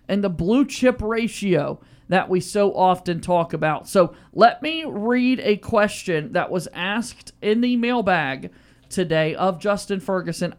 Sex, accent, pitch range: male, American, 175-225 Hz